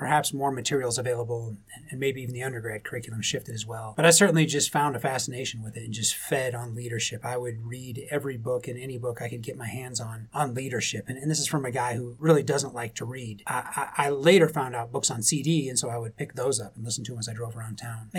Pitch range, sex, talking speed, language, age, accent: 120-150 Hz, male, 265 wpm, English, 30-49, American